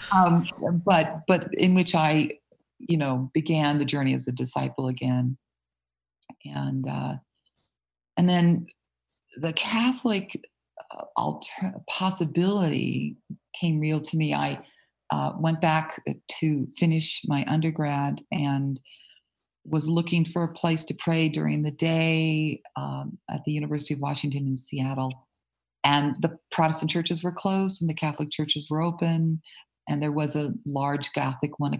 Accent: American